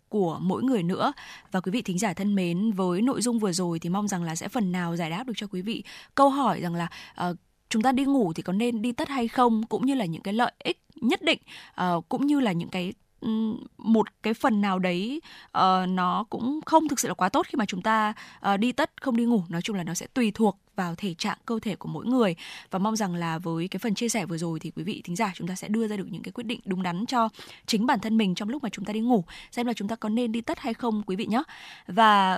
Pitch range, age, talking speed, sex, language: 185-240 Hz, 10-29, 275 wpm, female, Vietnamese